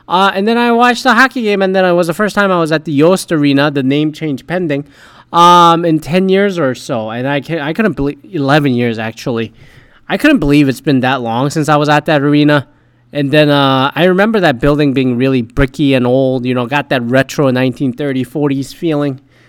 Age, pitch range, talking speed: 20-39, 140-205 Hz, 220 wpm